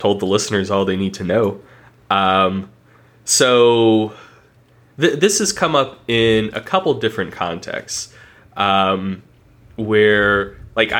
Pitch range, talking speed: 100-130 Hz, 120 wpm